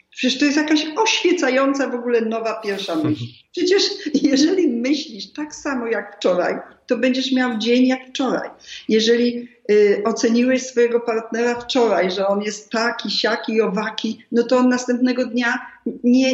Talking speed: 150 wpm